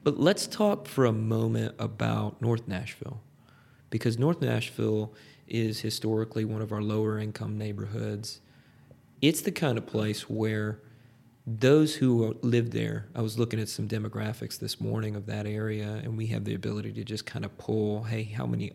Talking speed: 175 wpm